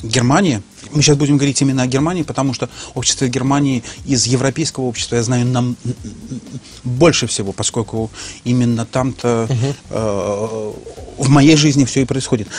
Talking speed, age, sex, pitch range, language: 150 wpm, 30-49, male, 125-150 Hz, Russian